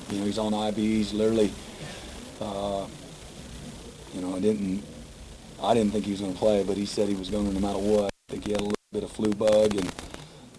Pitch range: 100-110 Hz